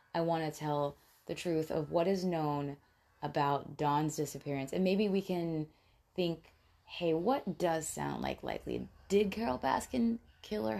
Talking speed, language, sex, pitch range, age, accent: 160 wpm, English, female, 150-185 Hz, 20-39, American